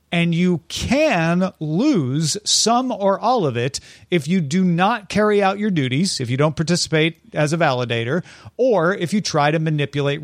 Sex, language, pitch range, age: male, English, 135-185 Hz, 40-59